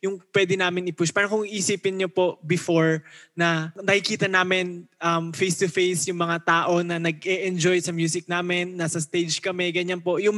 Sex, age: male, 20-39